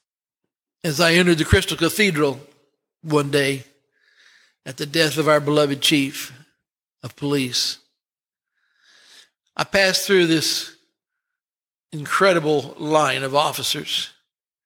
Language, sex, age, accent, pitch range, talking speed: English, male, 60-79, American, 140-165 Hz, 100 wpm